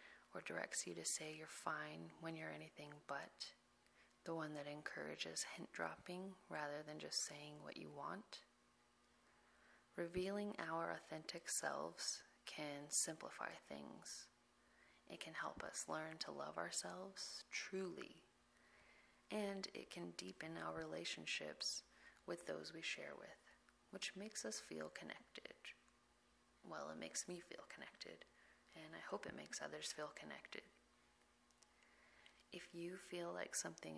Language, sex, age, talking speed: English, female, 30-49, 130 wpm